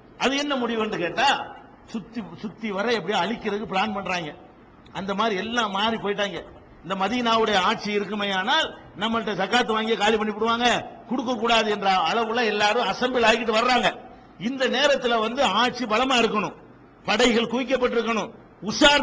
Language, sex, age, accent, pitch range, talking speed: Tamil, male, 50-69, native, 205-250 Hz, 40 wpm